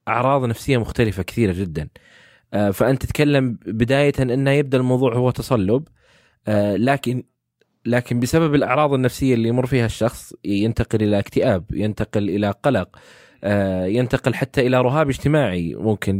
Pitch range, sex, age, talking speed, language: 105-135 Hz, male, 20-39, 130 wpm, Arabic